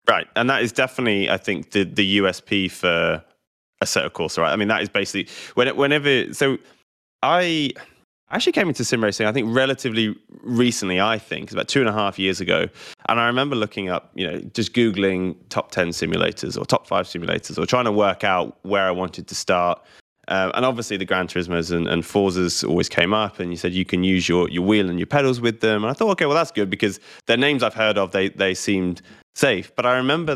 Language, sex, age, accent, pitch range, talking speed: English, male, 20-39, British, 90-120 Hz, 225 wpm